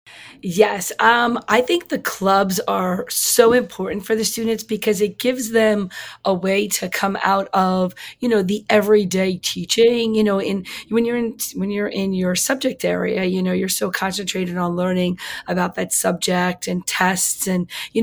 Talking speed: 175 wpm